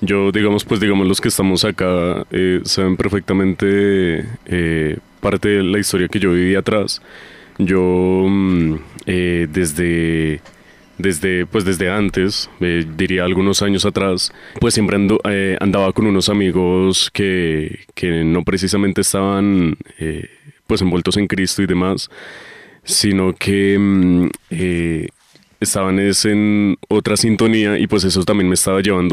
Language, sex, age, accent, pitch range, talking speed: Spanish, male, 20-39, Colombian, 90-100 Hz, 140 wpm